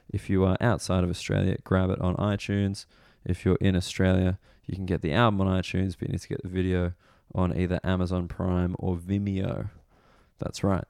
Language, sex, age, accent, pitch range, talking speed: English, male, 20-39, Australian, 90-105 Hz, 200 wpm